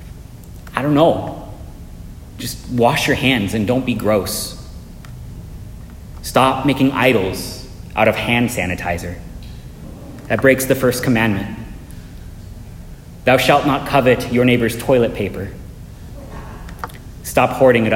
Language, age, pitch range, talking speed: English, 30-49, 110-165 Hz, 115 wpm